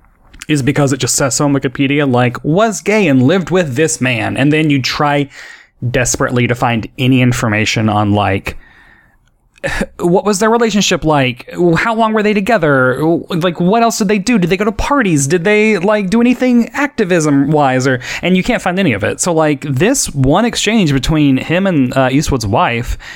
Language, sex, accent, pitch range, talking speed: English, male, American, 130-185 Hz, 190 wpm